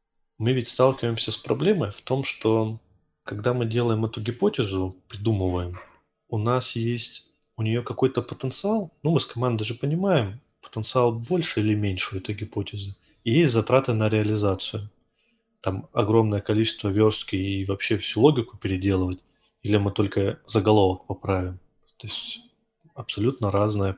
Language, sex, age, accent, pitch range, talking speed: Russian, male, 20-39, native, 100-125 Hz, 145 wpm